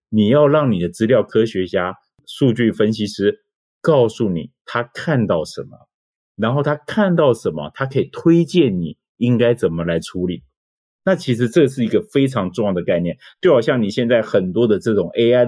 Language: Chinese